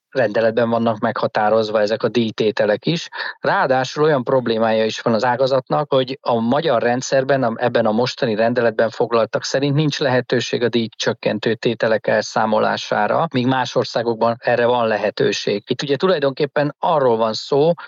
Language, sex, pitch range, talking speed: Hungarian, male, 115-145 Hz, 140 wpm